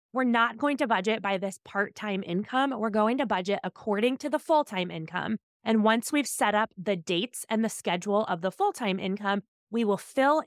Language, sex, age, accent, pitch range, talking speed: English, female, 20-39, American, 200-250 Hz, 200 wpm